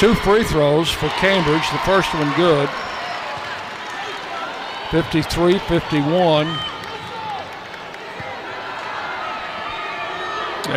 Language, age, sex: English, 60-79, male